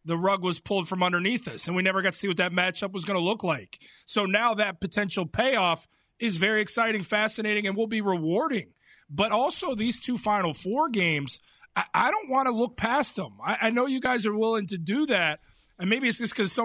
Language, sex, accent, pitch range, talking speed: English, male, American, 185-240 Hz, 235 wpm